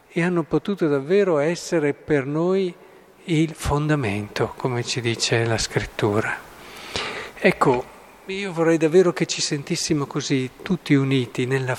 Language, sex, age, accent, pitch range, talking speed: Italian, male, 50-69, native, 130-155 Hz, 125 wpm